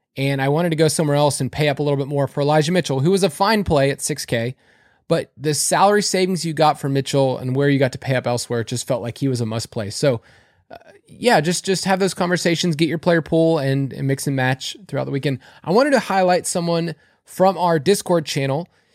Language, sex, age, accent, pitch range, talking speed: English, male, 20-39, American, 140-185 Hz, 250 wpm